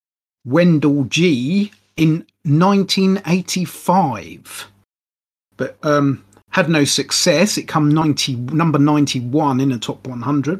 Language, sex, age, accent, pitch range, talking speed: English, male, 30-49, British, 120-155 Hz, 100 wpm